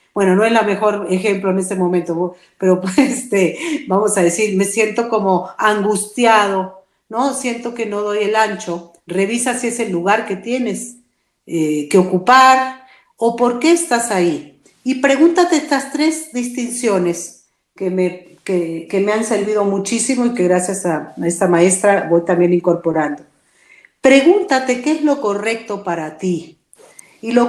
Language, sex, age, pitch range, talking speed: Spanish, female, 50-69, 190-260 Hz, 155 wpm